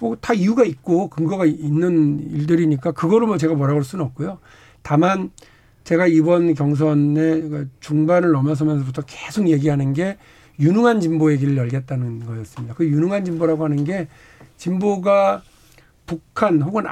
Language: Korean